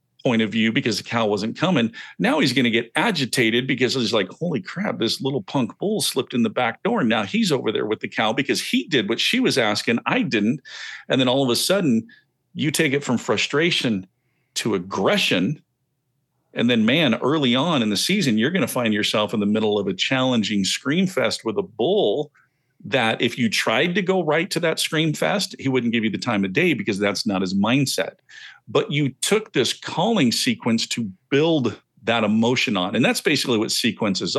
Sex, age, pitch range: male, 50-69, 115-185 Hz